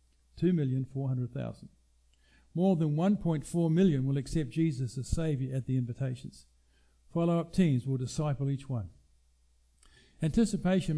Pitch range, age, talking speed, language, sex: 125-160 Hz, 50-69, 105 wpm, English, male